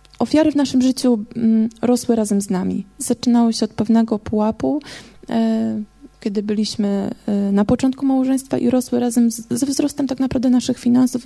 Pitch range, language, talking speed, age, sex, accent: 220-260 Hz, Polish, 145 wpm, 20-39, female, native